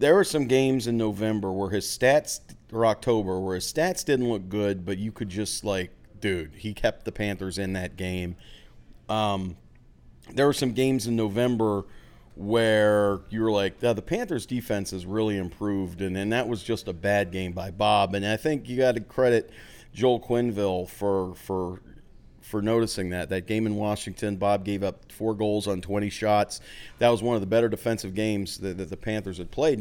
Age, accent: 40-59, American